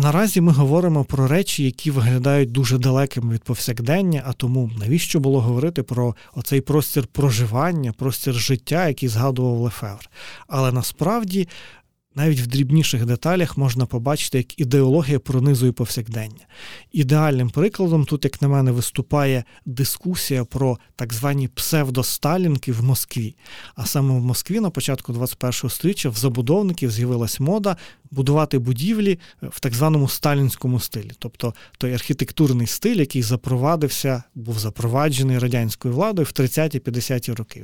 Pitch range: 125-150 Hz